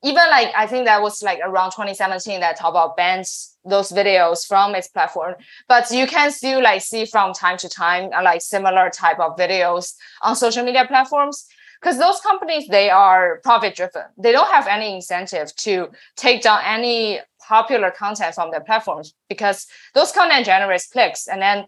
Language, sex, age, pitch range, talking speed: English, female, 20-39, 185-245 Hz, 175 wpm